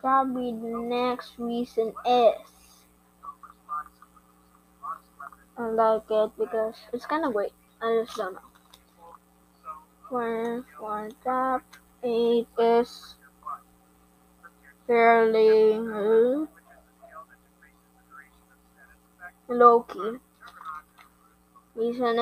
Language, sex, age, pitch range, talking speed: English, female, 20-39, 215-245 Hz, 65 wpm